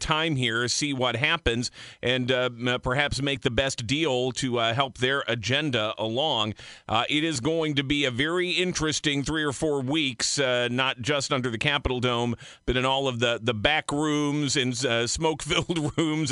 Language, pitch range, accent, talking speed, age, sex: English, 125-155 Hz, American, 185 wpm, 50-69, male